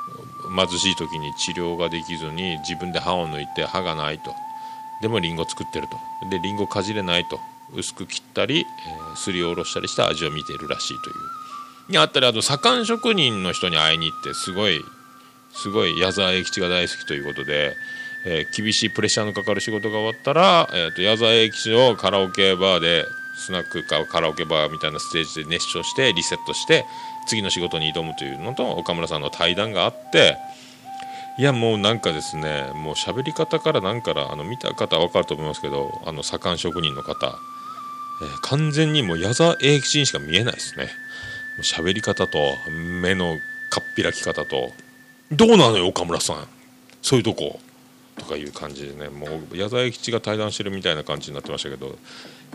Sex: male